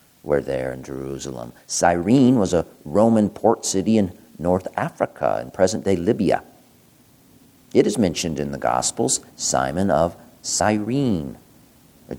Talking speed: 130 wpm